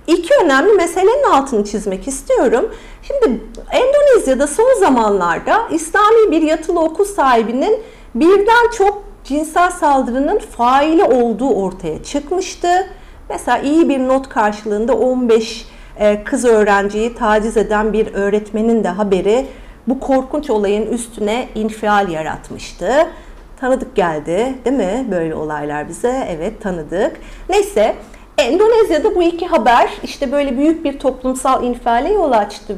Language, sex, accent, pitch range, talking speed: Turkish, female, native, 215-315 Hz, 120 wpm